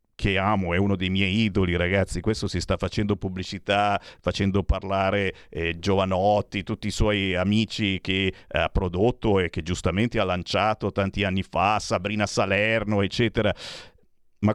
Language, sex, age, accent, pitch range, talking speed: Italian, male, 50-69, native, 95-120 Hz, 150 wpm